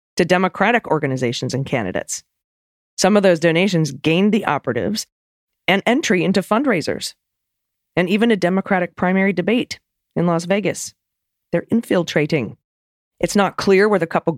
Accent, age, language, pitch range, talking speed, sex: American, 30-49, English, 130-180 Hz, 140 wpm, female